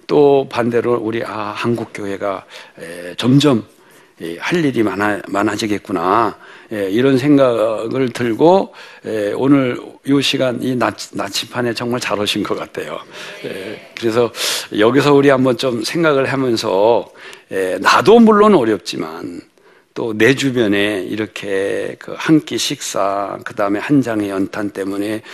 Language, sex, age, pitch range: Korean, male, 60-79, 110-170 Hz